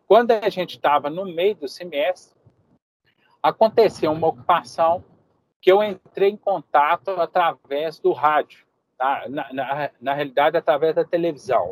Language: Portuguese